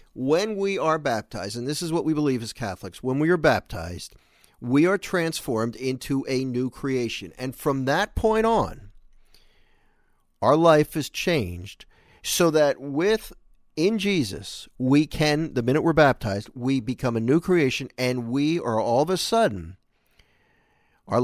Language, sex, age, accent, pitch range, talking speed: English, male, 50-69, American, 110-150 Hz, 160 wpm